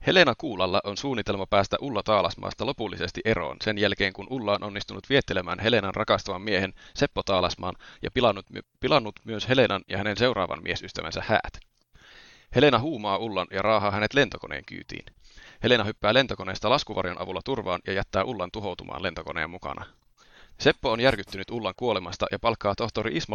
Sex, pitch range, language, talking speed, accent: male, 100-120 Hz, Finnish, 155 wpm, native